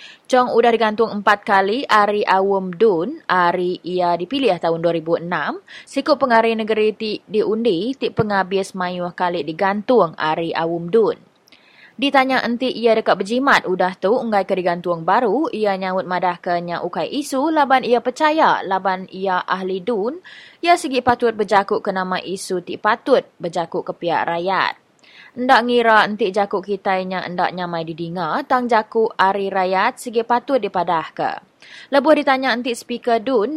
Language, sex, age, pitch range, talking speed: English, female, 20-39, 185-240 Hz, 145 wpm